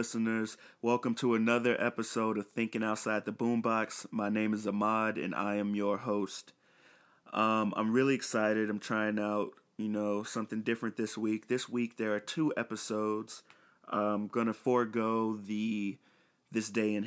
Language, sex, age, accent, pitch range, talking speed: English, male, 30-49, American, 100-110 Hz, 160 wpm